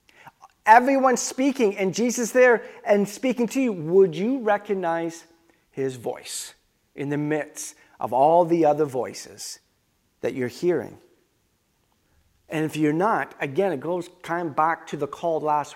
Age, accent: 40-59, American